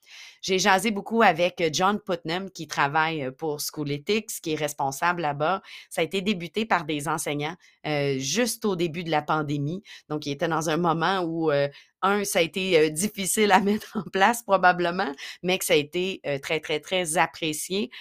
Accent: Canadian